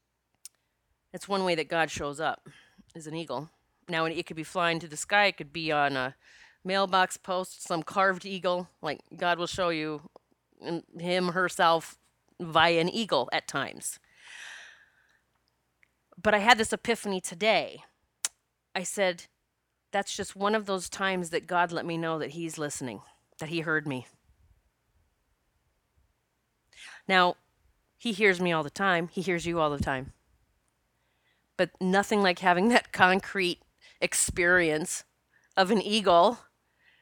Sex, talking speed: female, 145 wpm